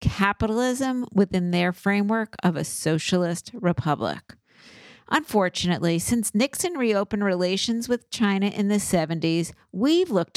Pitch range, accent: 170-215 Hz, American